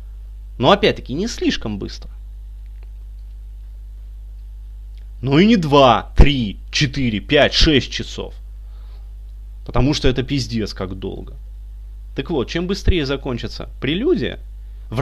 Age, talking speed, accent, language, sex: 30-49, 110 wpm, native, Russian, male